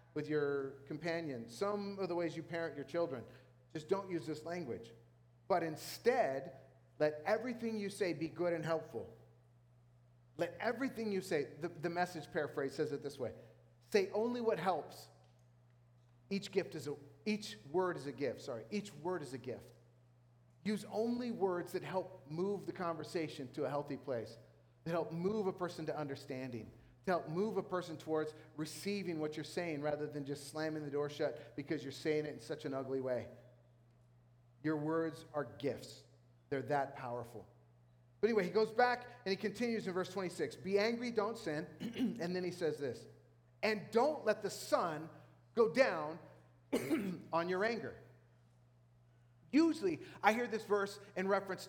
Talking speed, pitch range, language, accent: 165 wpm, 130-195 Hz, English, American